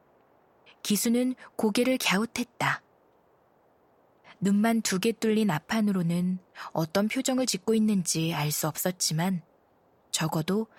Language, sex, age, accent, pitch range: Korean, female, 20-39, native, 175-225 Hz